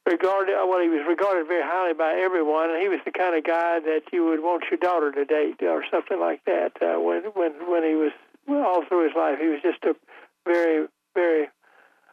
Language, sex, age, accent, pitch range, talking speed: English, male, 60-79, American, 165-195 Hz, 220 wpm